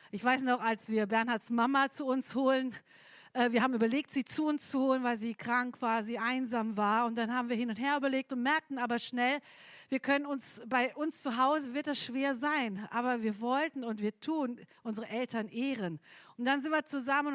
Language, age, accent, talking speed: German, 50-69, German, 220 wpm